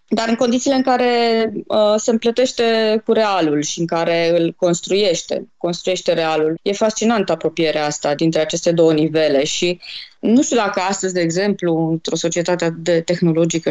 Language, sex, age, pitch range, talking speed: Romanian, female, 20-39, 175-260 Hz, 155 wpm